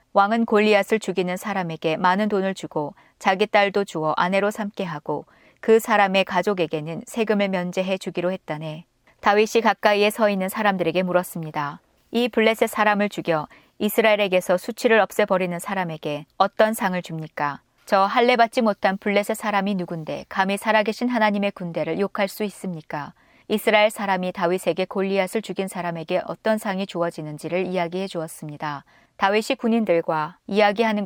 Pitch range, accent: 170-210 Hz, native